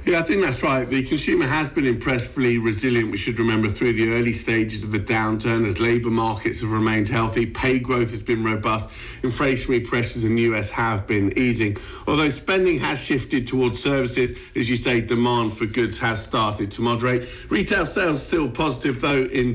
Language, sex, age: English, male, 50-69